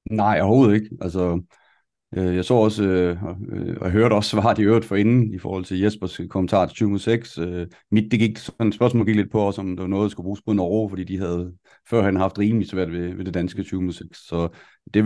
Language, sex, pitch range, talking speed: Danish, male, 95-110 Hz, 210 wpm